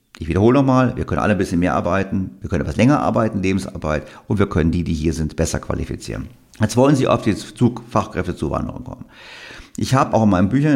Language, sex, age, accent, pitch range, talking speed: German, male, 50-69, German, 85-110 Hz, 210 wpm